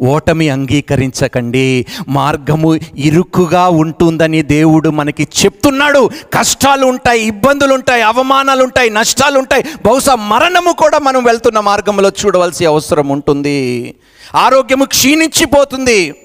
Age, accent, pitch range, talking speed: 50-69, native, 120-180 Hz, 100 wpm